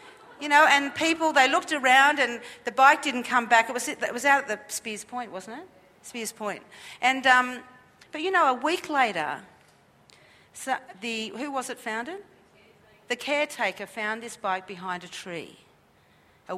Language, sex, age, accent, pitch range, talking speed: English, female, 50-69, Australian, 215-280 Hz, 175 wpm